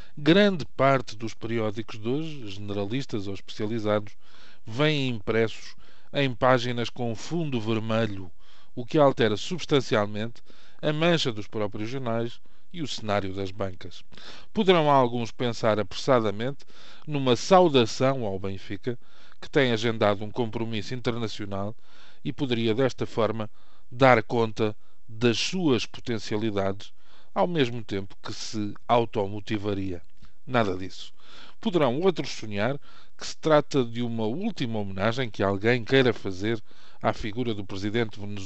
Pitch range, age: 105-130 Hz, 20-39